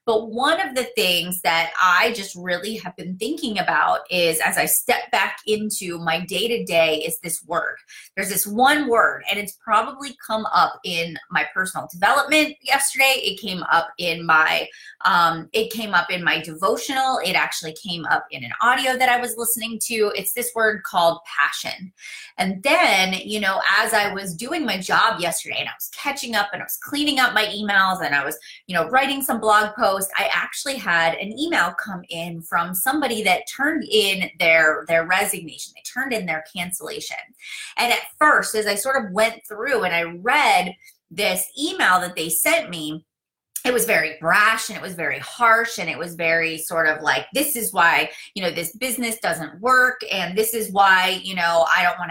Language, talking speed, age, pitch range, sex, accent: English, 200 wpm, 30-49, 175-245 Hz, female, American